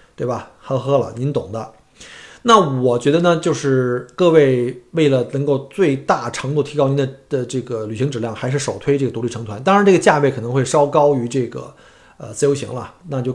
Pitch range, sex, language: 120-155 Hz, male, Chinese